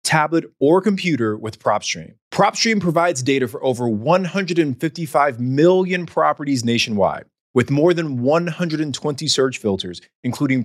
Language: English